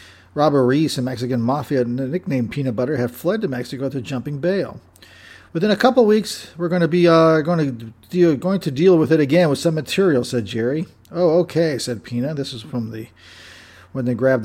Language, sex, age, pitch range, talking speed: English, male, 40-59, 120-160 Hz, 205 wpm